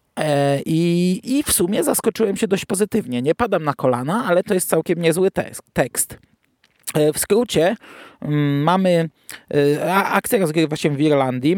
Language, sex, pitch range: Polish, male, 130-165 Hz